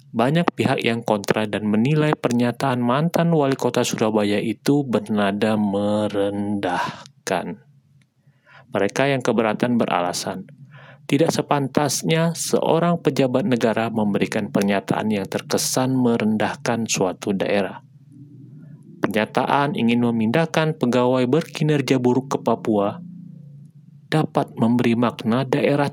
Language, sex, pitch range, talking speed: Indonesian, male, 115-150 Hz, 95 wpm